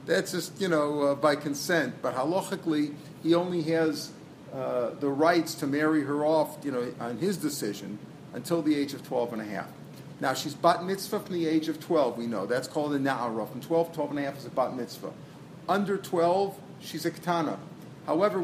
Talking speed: 205 wpm